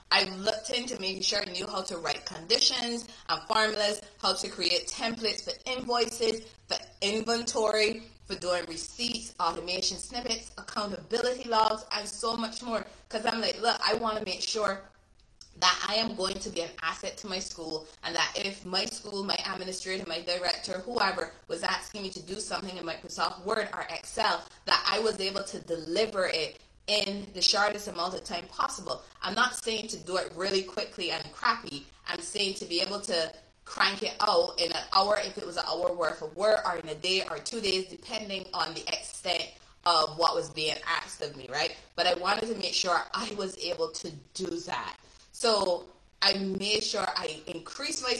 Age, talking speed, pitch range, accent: 20-39, 190 wpm, 180-220 Hz, American